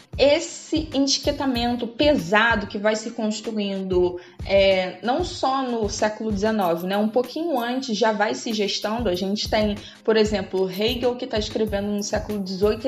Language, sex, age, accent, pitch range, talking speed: Portuguese, female, 20-39, Brazilian, 200-255 Hz, 145 wpm